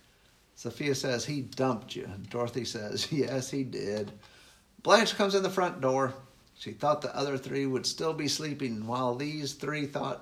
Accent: American